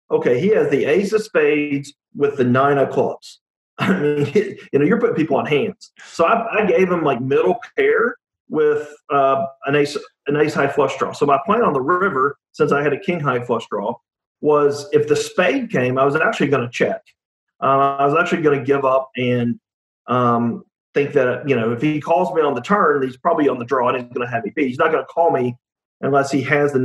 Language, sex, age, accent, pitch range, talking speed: English, male, 40-59, American, 130-180 Hz, 235 wpm